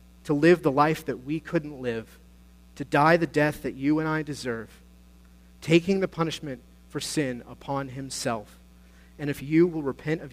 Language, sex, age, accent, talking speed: English, male, 40-59, American, 175 wpm